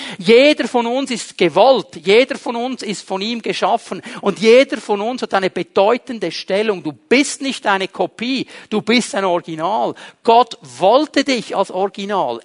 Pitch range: 185-240 Hz